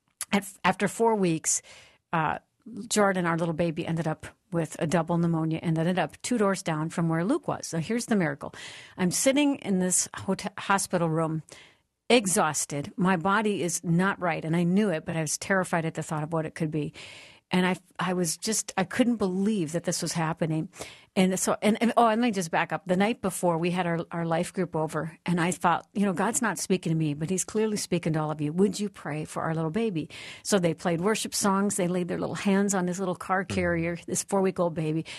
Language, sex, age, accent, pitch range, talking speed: English, female, 60-79, American, 160-200 Hz, 230 wpm